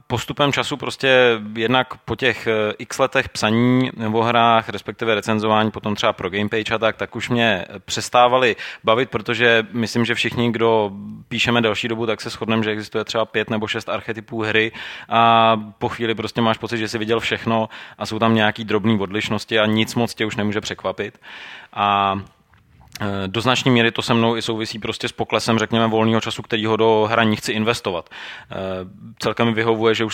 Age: 20-39